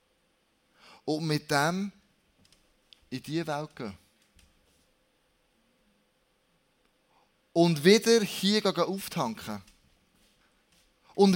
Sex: male